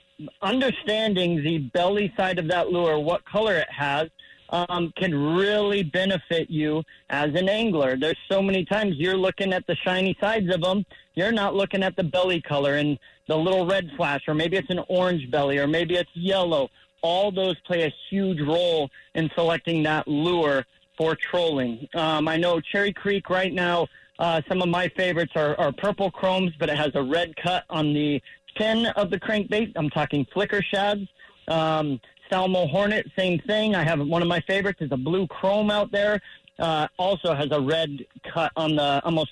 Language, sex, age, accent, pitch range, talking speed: English, male, 30-49, American, 155-185 Hz, 190 wpm